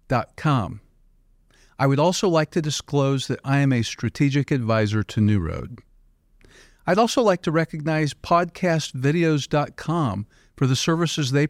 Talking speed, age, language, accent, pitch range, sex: 140 wpm, 50-69, English, American, 110-155 Hz, male